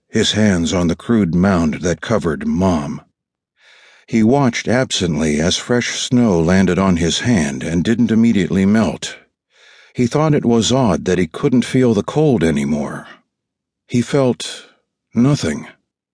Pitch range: 95-125 Hz